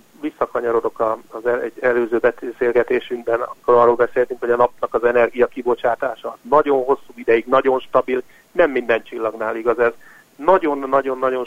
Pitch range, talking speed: 120-200 Hz, 130 wpm